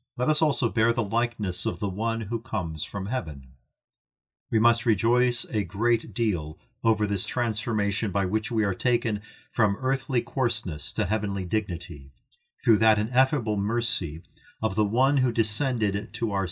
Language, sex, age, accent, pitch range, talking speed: English, male, 50-69, American, 100-120 Hz, 160 wpm